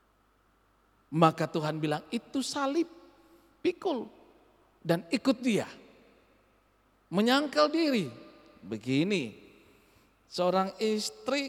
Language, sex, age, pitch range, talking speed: Indonesian, male, 50-69, 140-230 Hz, 75 wpm